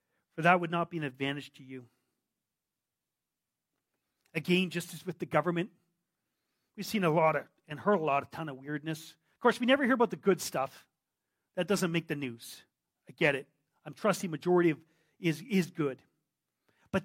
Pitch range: 165-235 Hz